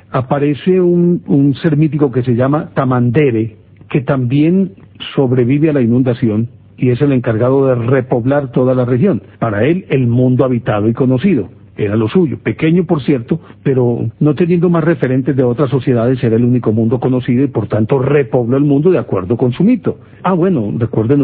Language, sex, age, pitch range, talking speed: Spanish, male, 50-69, 120-150 Hz, 180 wpm